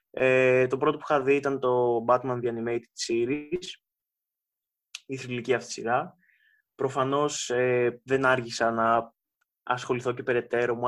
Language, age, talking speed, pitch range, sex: Greek, 20-39, 145 wpm, 120-145 Hz, male